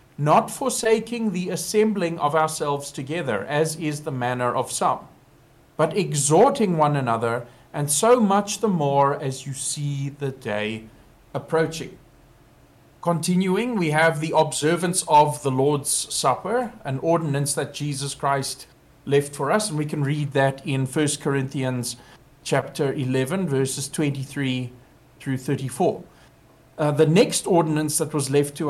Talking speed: 140 wpm